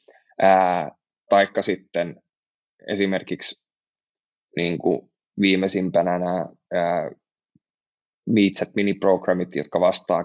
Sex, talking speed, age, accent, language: male, 70 wpm, 20-39, native, Finnish